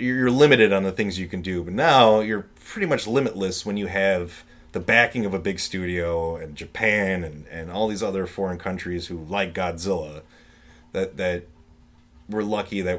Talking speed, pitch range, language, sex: 185 wpm, 85-105 Hz, English, male